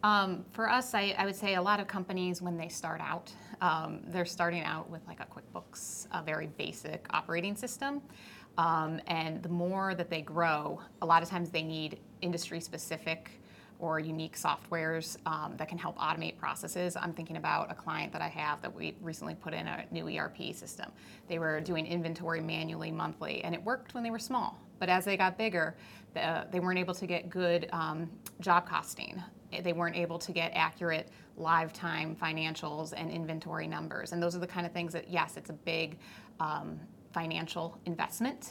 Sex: female